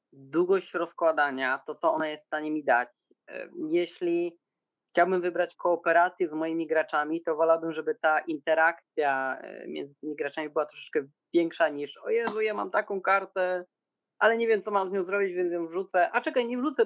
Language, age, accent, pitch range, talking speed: Polish, 20-39, native, 155-185 Hz, 180 wpm